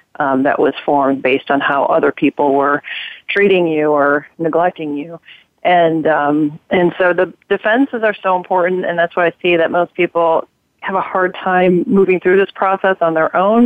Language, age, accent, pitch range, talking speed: English, 40-59, American, 150-175 Hz, 190 wpm